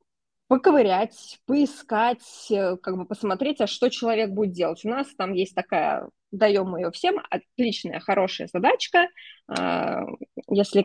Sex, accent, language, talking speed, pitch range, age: female, native, Russian, 125 wpm, 190-250 Hz, 20-39